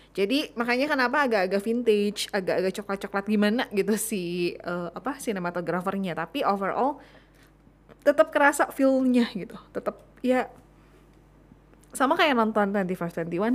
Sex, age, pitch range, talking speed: female, 20-39, 180-235 Hz, 105 wpm